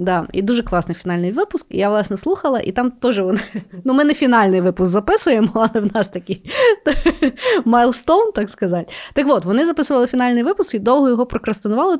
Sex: female